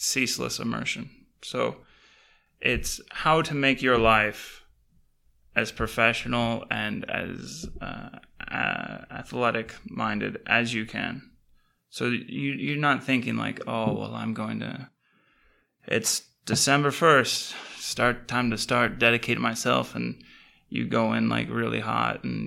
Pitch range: 110-130 Hz